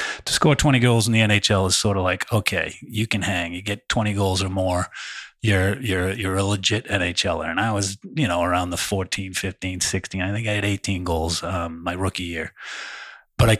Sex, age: male, 30-49